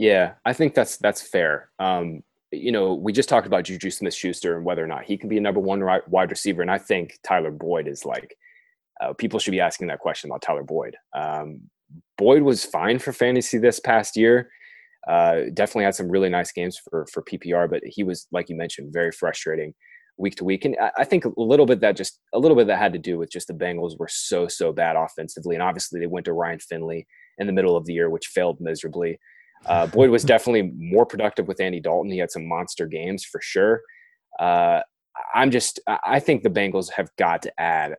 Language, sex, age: English, male, 20-39